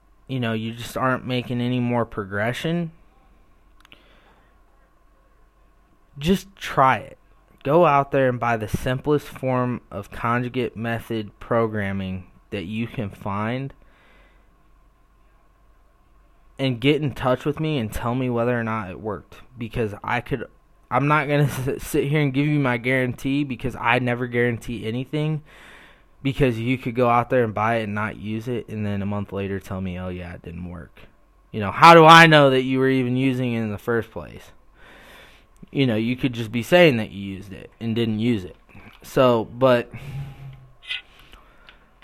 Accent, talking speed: American, 170 wpm